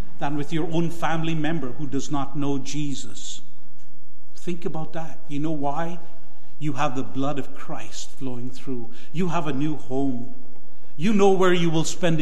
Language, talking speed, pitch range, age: English, 175 wpm, 135-165 Hz, 50-69